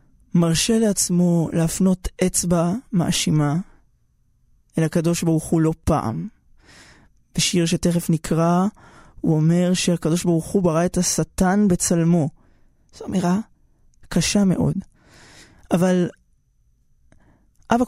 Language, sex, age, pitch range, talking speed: Hebrew, male, 20-39, 160-185 Hz, 95 wpm